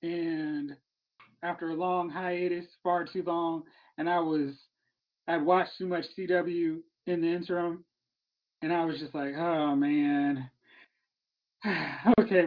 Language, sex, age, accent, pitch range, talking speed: English, male, 20-39, American, 160-215 Hz, 130 wpm